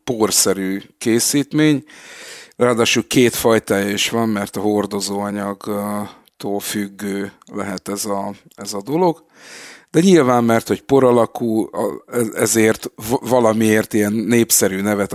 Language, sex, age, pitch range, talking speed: Hungarian, male, 50-69, 100-115 Hz, 105 wpm